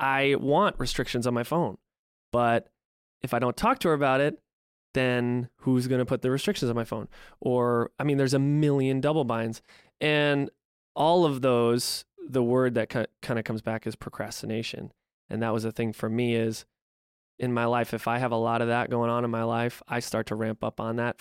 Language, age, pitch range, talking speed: English, 20-39, 115-140 Hz, 215 wpm